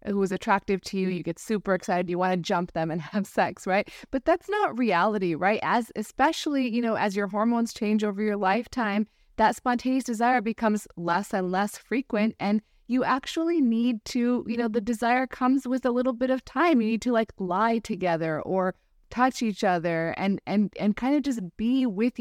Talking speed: 205 wpm